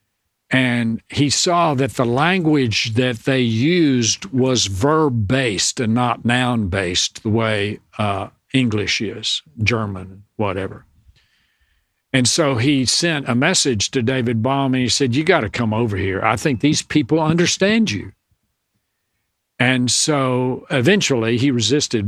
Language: English